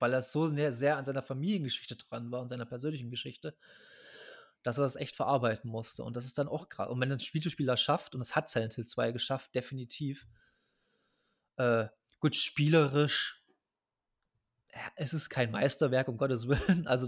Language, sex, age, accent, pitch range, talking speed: German, male, 20-39, German, 125-155 Hz, 175 wpm